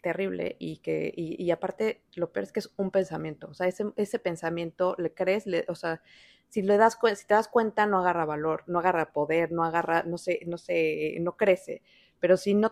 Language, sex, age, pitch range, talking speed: Spanish, female, 30-49, 170-205 Hz, 225 wpm